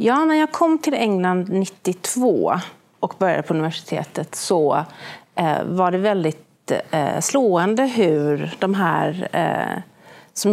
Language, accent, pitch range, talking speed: Swedish, native, 185-235 Hz, 115 wpm